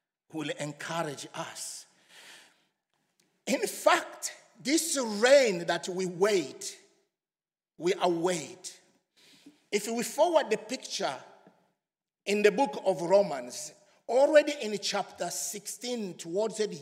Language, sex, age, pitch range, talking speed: English, male, 50-69, 185-285 Hz, 100 wpm